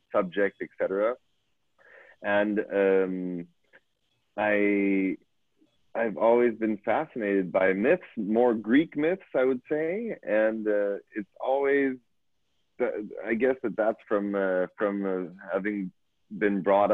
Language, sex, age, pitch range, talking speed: English, male, 30-49, 95-110 Hz, 115 wpm